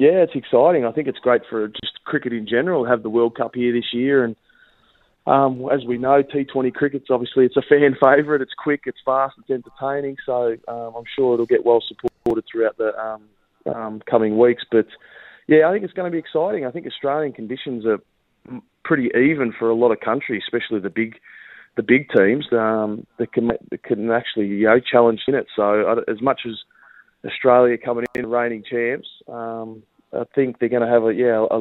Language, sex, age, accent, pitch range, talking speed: English, male, 20-39, Australian, 110-125 Hz, 205 wpm